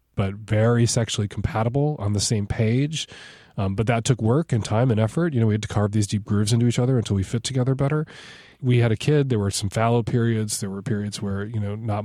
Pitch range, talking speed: 105-130 Hz, 250 wpm